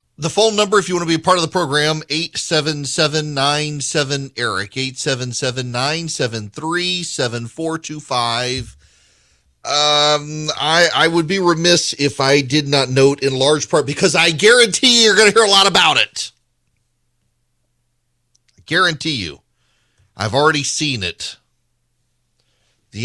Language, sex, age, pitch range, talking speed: English, male, 40-59, 115-145 Hz, 130 wpm